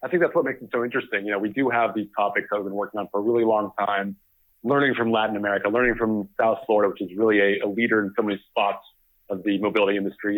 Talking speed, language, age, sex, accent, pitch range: 265 wpm, English, 40-59, male, American, 100-120 Hz